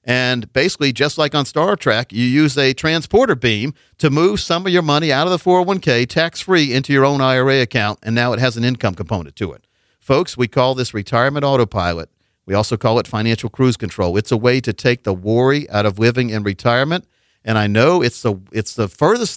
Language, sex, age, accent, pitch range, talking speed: English, male, 50-69, American, 115-150 Hz, 215 wpm